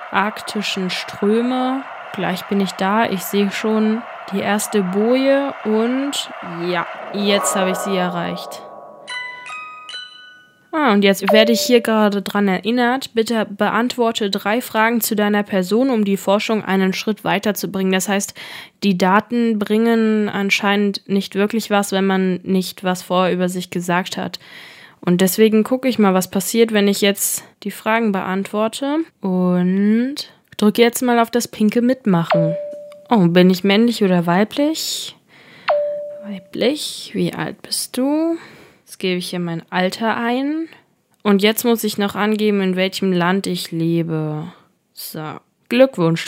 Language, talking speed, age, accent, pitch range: German, 145 wpm, 10-29, German, 190-235 Hz